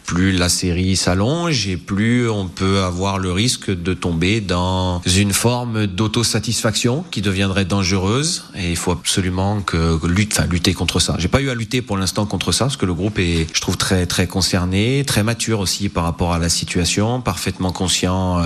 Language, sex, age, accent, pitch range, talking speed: French, male, 30-49, French, 95-130 Hz, 190 wpm